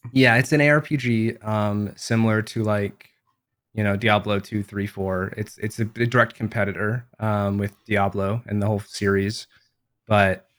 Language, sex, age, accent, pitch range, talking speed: English, male, 20-39, American, 105-120 Hz, 160 wpm